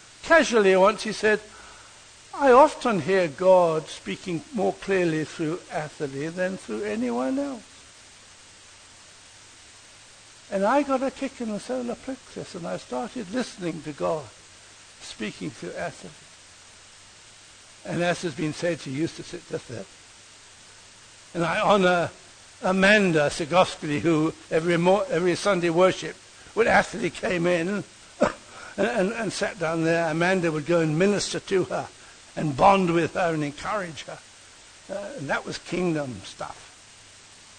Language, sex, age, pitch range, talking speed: English, male, 60-79, 140-200 Hz, 140 wpm